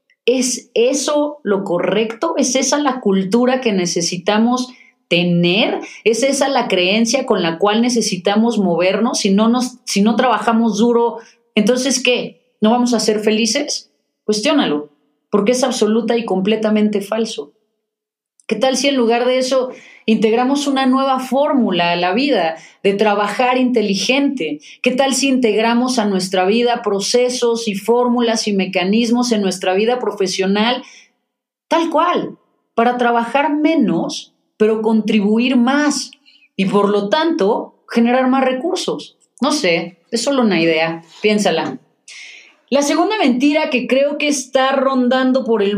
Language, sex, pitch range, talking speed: Spanish, female, 210-260 Hz, 135 wpm